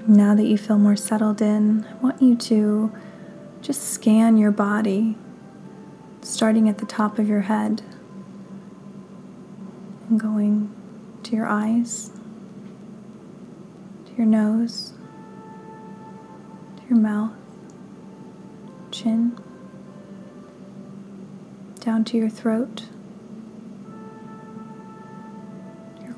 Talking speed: 90 wpm